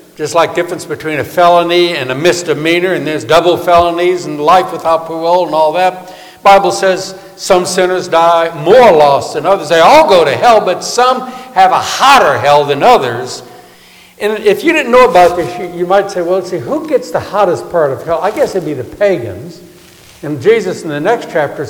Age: 60-79